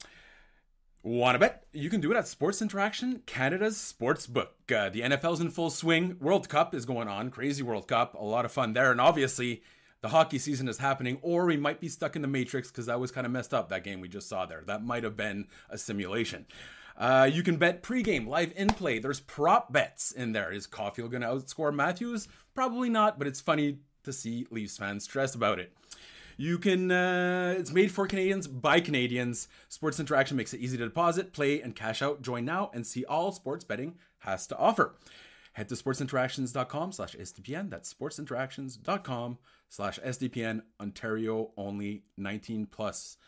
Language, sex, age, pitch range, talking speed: English, male, 30-49, 125-170 Hz, 195 wpm